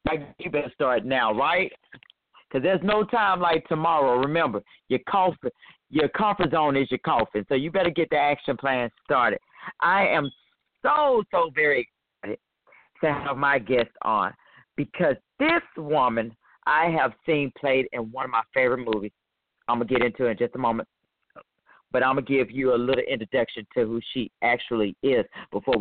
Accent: American